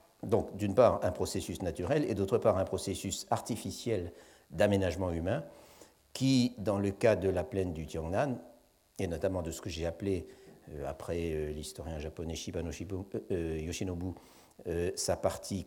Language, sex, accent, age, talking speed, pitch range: French, male, French, 60-79, 155 wpm, 85-100 Hz